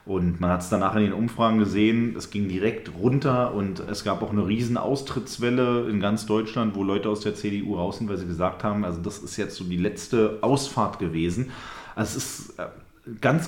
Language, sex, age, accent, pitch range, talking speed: German, male, 30-49, German, 95-120 Hz, 210 wpm